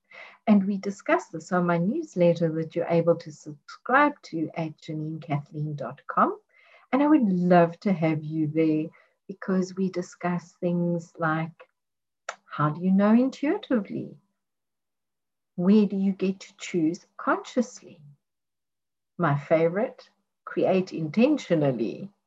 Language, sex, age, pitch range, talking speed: English, female, 60-79, 160-210 Hz, 120 wpm